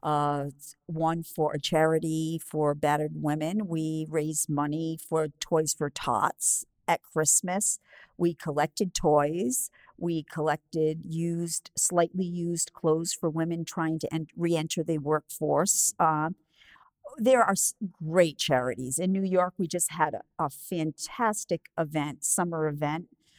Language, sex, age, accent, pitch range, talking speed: English, female, 50-69, American, 150-175 Hz, 130 wpm